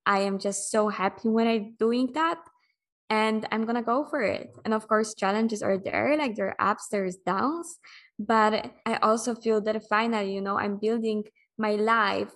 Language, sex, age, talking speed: English, female, 20-39, 195 wpm